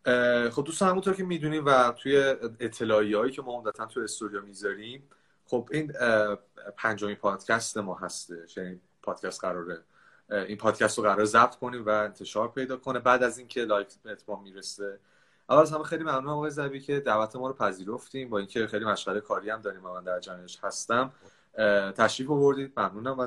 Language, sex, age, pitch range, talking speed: Persian, male, 30-49, 110-155 Hz, 175 wpm